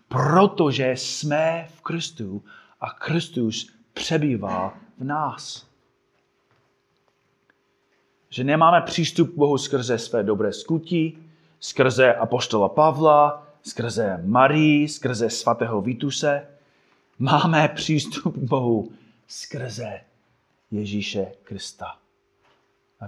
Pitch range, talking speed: 110-150 Hz, 90 wpm